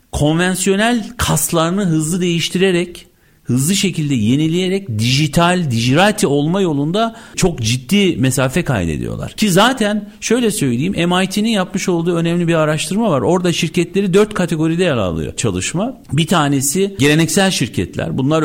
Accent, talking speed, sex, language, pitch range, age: native, 125 wpm, male, Turkish, 130-190 Hz, 50-69